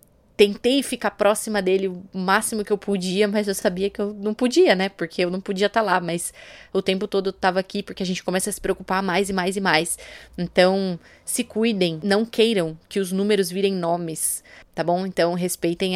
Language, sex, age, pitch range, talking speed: Portuguese, female, 20-39, 175-205 Hz, 210 wpm